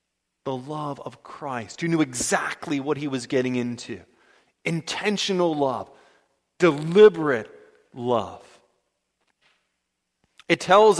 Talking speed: 100 wpm